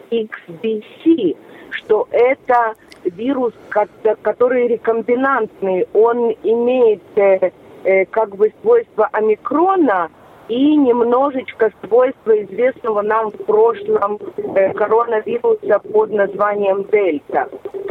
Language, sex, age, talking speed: English, female, 30-49, 75 wpm